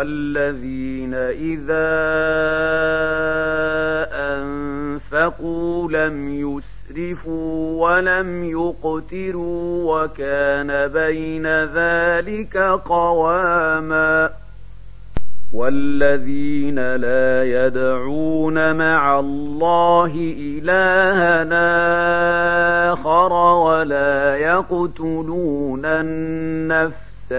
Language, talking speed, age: Arabic, 45 wpm, 40-59